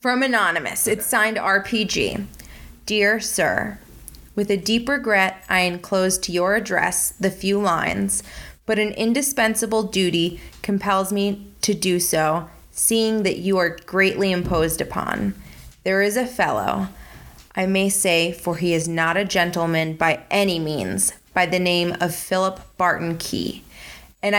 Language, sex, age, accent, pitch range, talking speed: English, female, 20-39, American, 175-210 Hz, 145 wpm